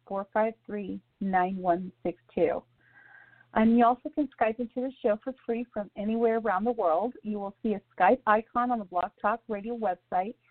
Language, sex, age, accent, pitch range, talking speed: English, female, 40-59, American, 200-245 Hz, 195 wpm